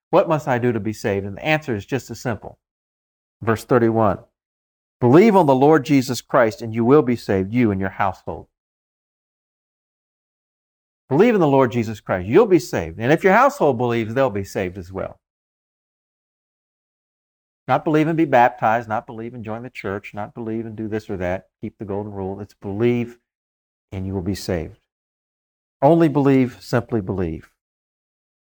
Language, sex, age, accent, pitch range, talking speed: English, male, 50-69, American, 100-140 Hz, 175 wpm